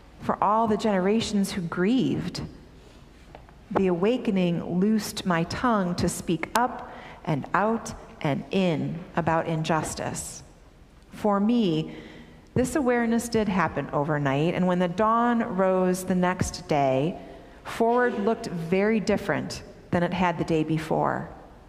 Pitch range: 170-210 Hz